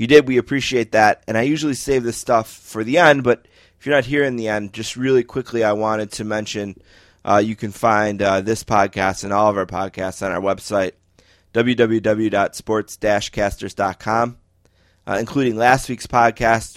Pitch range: 95-120 Hz